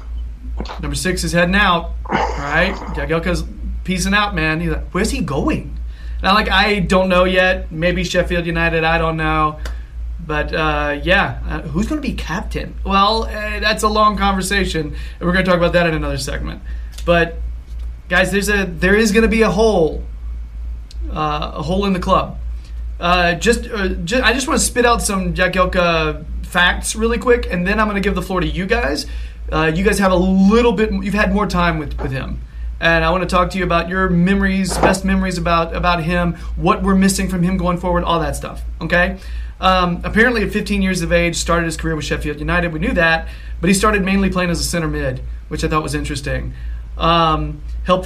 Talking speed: 210 wpm